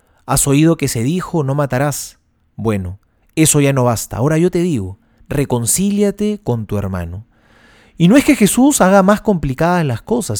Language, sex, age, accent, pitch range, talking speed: Spanish, male, 30-49, Argentinian, 110-175 Hz, 175 wpm